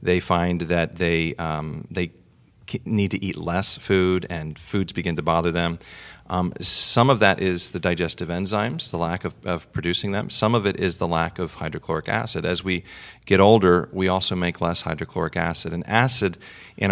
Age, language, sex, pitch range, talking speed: 40-59, English, male, 85-105 Hz, 190 wpm